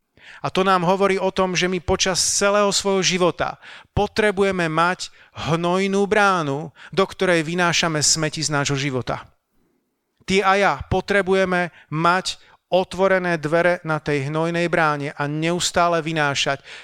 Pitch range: 160-190 Hz